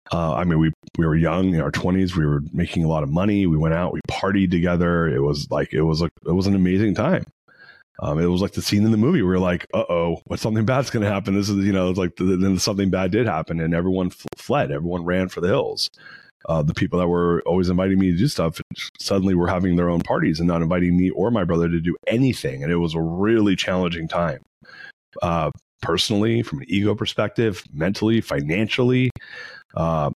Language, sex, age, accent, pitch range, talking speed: English, male, 30-49, American, 85-100 Hz, 235 wpm